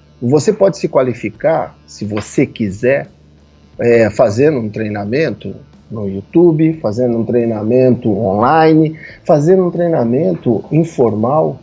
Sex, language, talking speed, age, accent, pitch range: male, Portuguese, 110 wpm, 50-69, Brazilian, 115-160 Hz